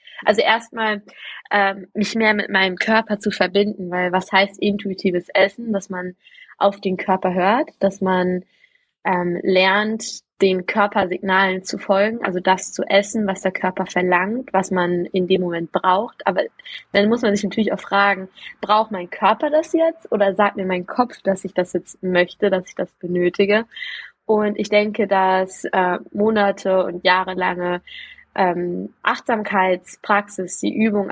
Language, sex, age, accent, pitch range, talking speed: German, female, 20-39, German, 185-210 Hz, 155 wpm